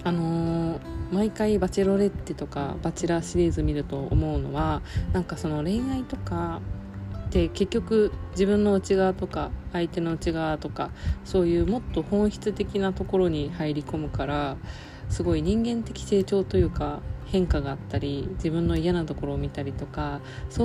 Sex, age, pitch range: female, 20-39, 150-195 Hz